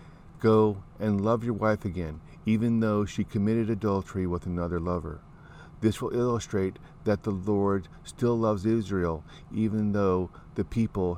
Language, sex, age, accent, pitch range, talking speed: English, male, 50-69, American, 90-110 Hz, 145 wpm